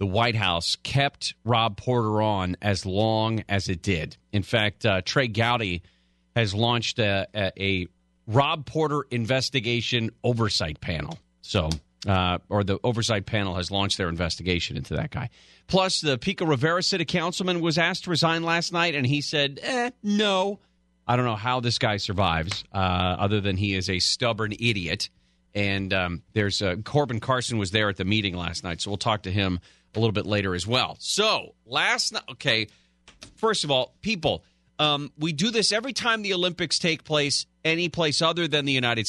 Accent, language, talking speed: American, English, 180 wpm